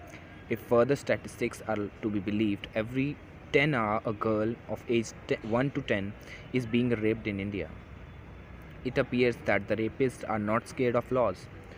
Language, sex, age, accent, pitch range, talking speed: English, male, 20-39, Indian, 100-115 Hz, 170 wpm